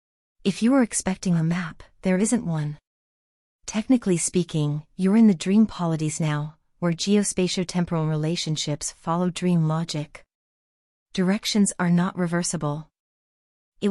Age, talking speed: 40-59, 120 wpm